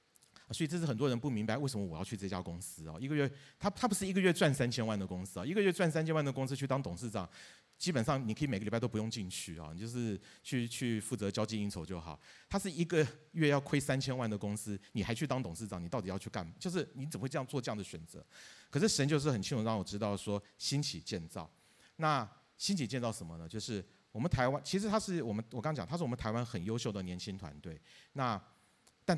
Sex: male